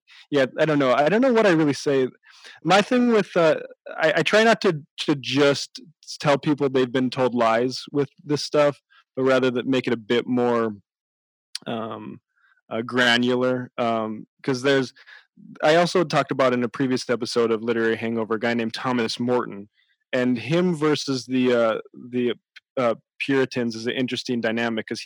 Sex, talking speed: male, 175 wpm